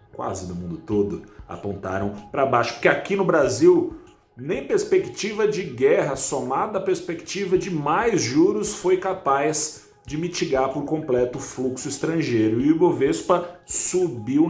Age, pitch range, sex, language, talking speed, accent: 30-49, 110-175 Hz, male, Portuguese, 140 wpm, Brazilian